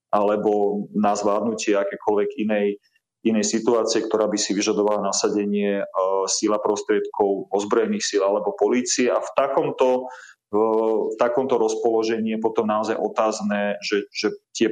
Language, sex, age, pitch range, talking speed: Slovak, male, 30-49, 100-115 Hz, 130 wpm